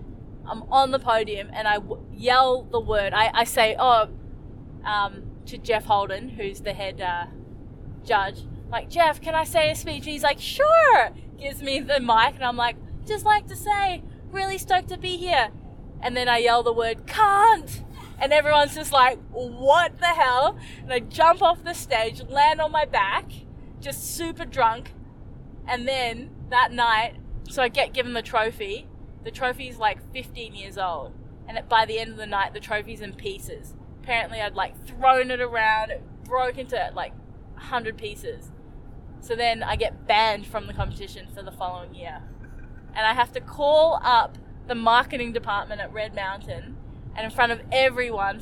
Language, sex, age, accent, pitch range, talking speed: Hebrew, female, 20-39, Australian, 210-300 Hz, 180 wpm